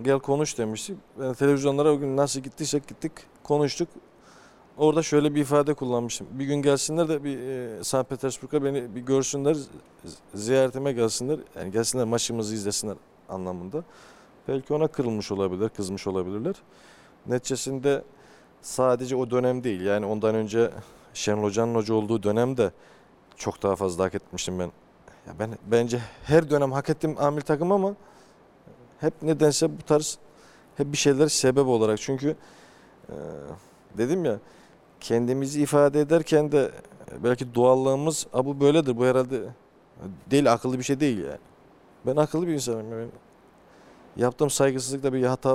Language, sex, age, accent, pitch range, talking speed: Turkish, male, 40-59, native, 115-145 Hz, 140 wpm